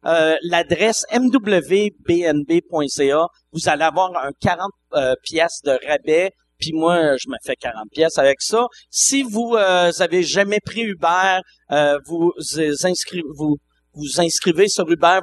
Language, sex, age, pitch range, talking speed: French, male, 50-69, 165-225 Hz, 145 wpm